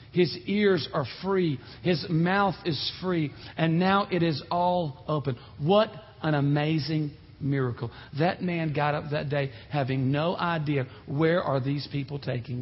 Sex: male